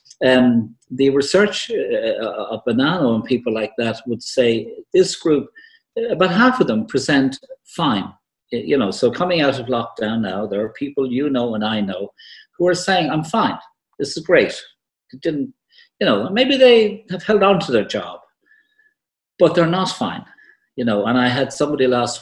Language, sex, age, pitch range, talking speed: English, male, 50-69, 120-200 Hz, 185 wpm